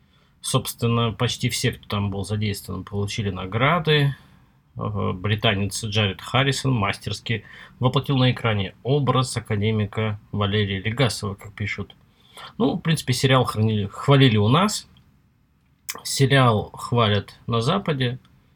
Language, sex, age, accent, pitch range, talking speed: Russian, male, 20-39, native, 105-130 Hz, 105 wpm